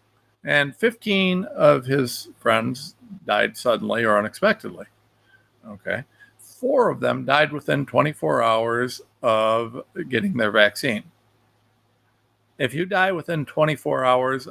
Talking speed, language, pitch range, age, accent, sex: 110 wpm, English, 115-150 Hz, 50-69, American, male